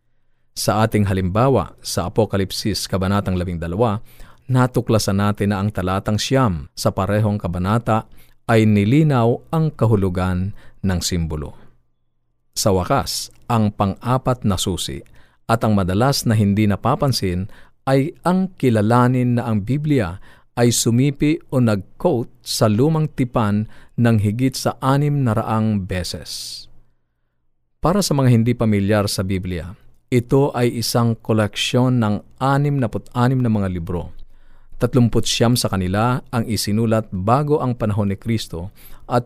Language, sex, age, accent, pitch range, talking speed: Filipino, male, 50-69, native, 100-125 Hz, 130 wpm